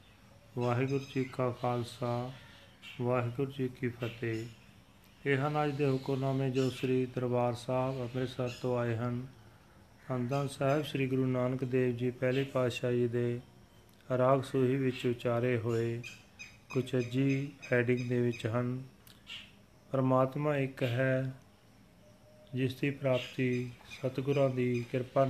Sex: male